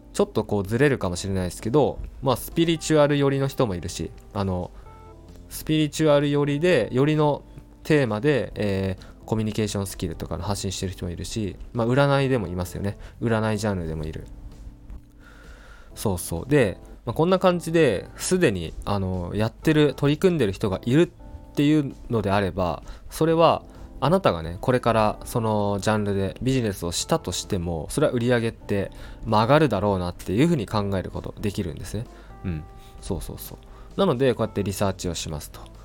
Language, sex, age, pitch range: Japanese, male, 20-39, 95-135 Hz